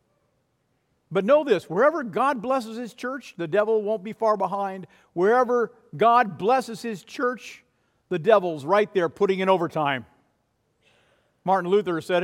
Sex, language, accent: male, English, American